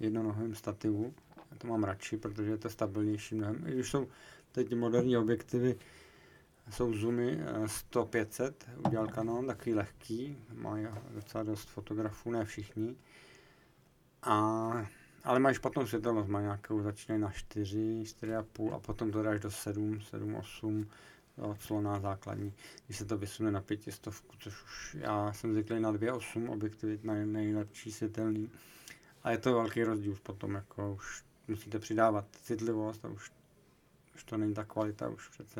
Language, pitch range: Czech, 105-120 Hz